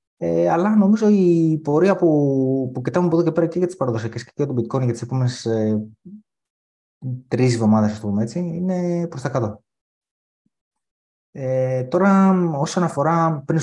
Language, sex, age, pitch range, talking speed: Greek, male, 30-49, 110-145 Hz, 165 wpm